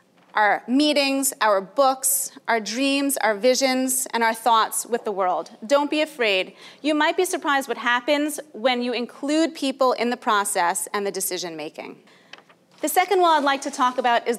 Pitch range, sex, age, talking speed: 230-310 Hz, female, 30-49, 180 wpm